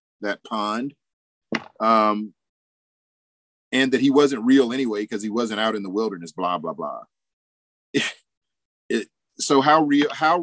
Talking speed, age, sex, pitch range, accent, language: 130 wpm, 40-59, male, 100-125 Hz, American, English